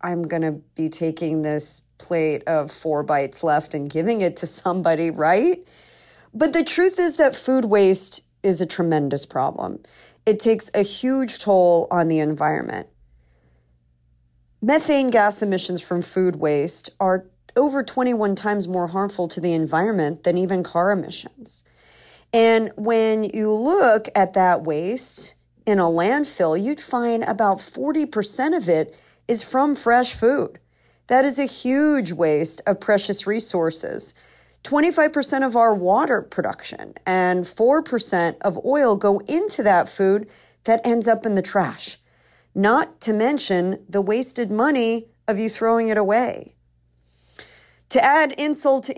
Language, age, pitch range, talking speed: English, 40-59, 170-245 Hz, 145 wpm